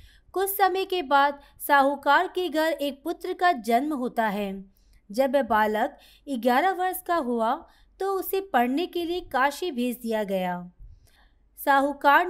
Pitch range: 235-330 Hz